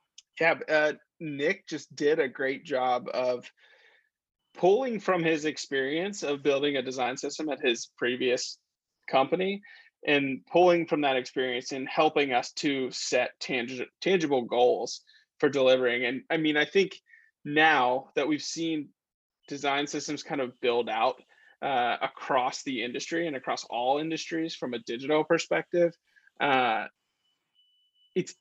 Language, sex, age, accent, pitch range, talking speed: English, male, 20-39, American, 135-165 Hz, 135 wpm